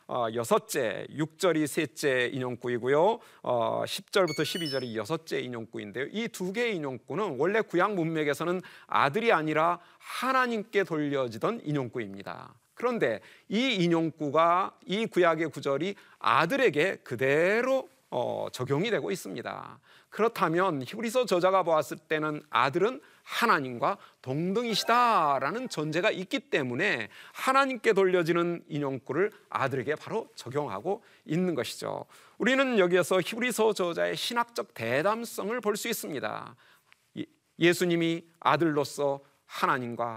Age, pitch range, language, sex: 40-59, 145-220 Hz, Korean, male